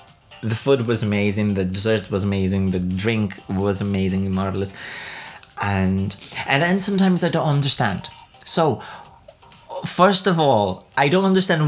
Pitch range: 115-160 Hz